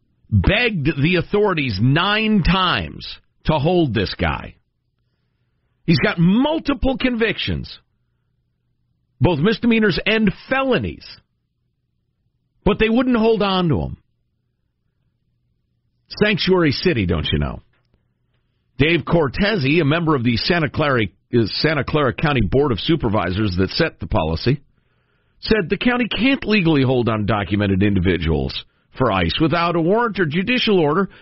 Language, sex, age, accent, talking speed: English, male, 50-69, American, 120 wpm